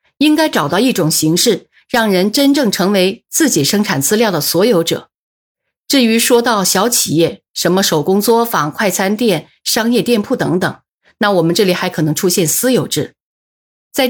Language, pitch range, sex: Chinese, 170-235 Hz, female